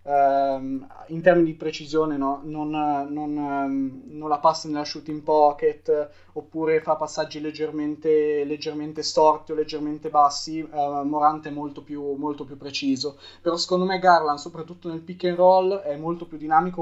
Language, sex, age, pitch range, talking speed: Italian, male, 20-39, 140-160 Hz, 155 wpm